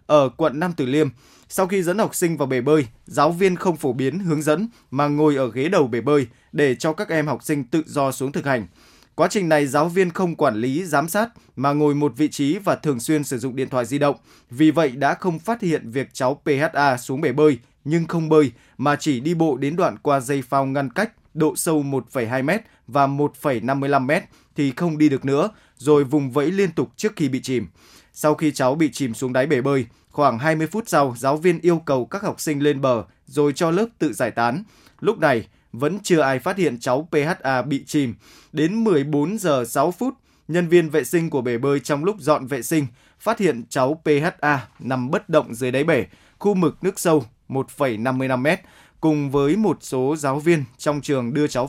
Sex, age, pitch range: male, 20-39, 130-160 Hz